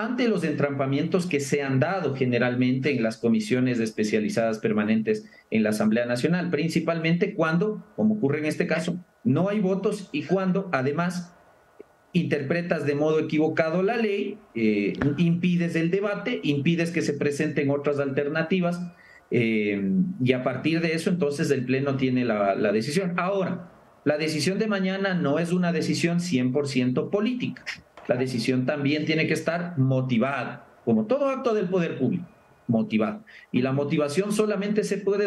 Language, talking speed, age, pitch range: English, 155 wpm, 40-59, 135-185 Hz